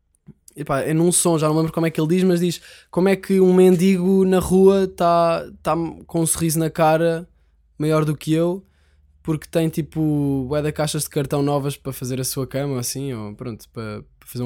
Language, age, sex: Portuguese, 10-29, male